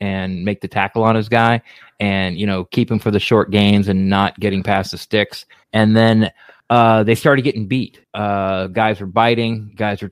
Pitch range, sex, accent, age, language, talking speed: 105-130 Hz, male, American, 30-49, English, 210 wpm